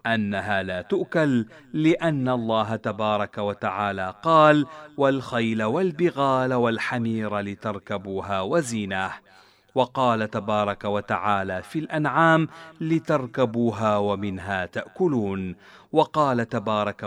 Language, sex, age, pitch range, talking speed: Arabic, male, 40-59, 105-150 Hz, 80 wpm